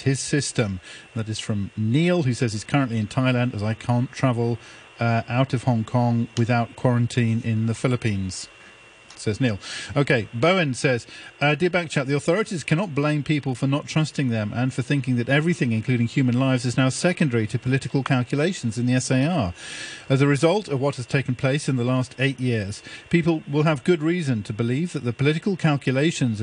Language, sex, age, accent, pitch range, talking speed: English, male, 40-59, British, 120-150 Hz, 190 wpm